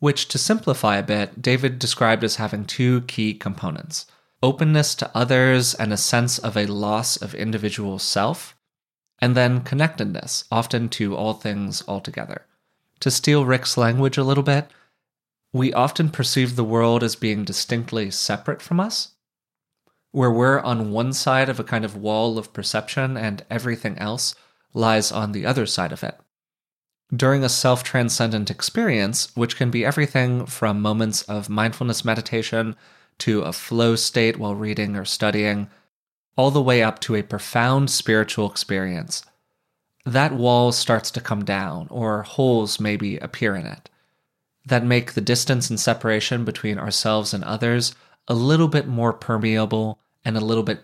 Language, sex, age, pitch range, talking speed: English, male, 20-39, 110-130 Hz, 155 wpm